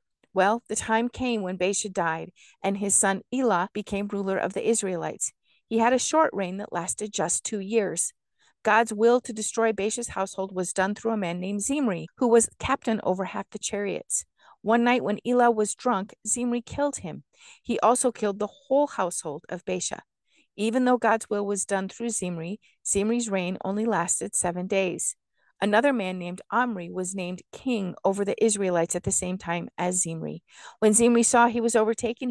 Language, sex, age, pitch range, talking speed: English, female, 50-69, 190-235 Hz, 185 wpm